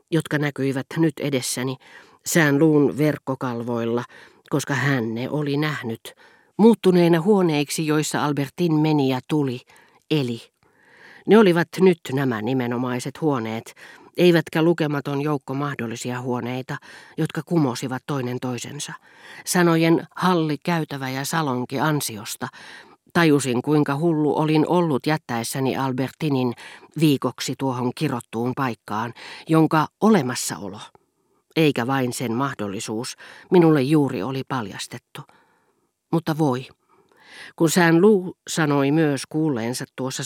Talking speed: 105 wpm